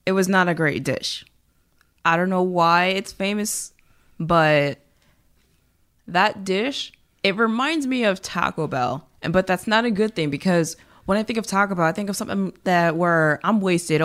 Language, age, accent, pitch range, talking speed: English, 20-39, American, 170-205 Hz, 185 wpm